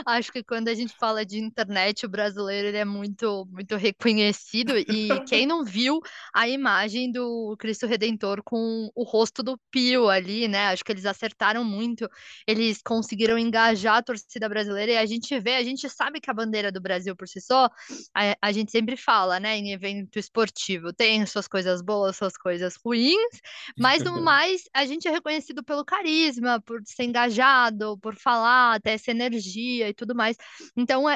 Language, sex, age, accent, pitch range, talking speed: Portuguese, female, 20-39, Brazilian, 210-250 Hz, 180 wpm